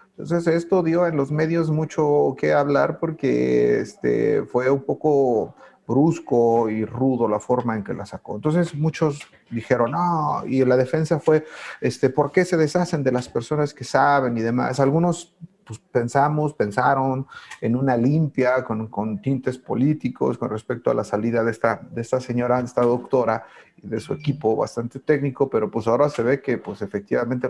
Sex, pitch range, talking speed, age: male, 115-150 Hz, 175 wpm, 40-59